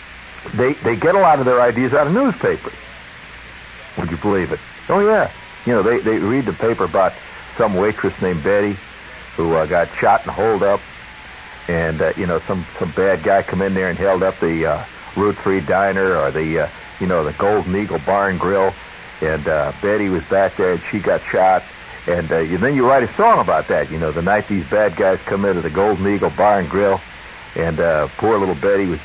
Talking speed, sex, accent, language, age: 220 wpm, male, American, English, 60-79